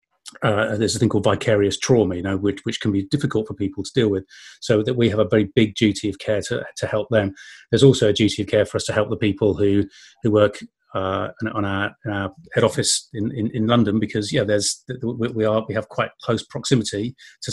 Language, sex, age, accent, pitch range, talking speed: English, male, 30-49, British, 105-120 Hz, 245 wpm